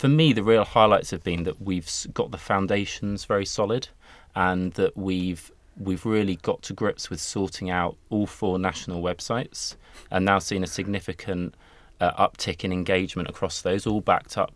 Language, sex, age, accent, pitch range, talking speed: English, male, 20-39, British, 90-110 Hz, 175 wpm